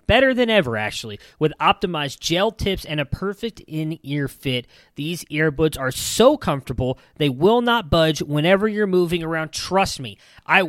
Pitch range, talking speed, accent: 145-185 Hz, 165 wpm, American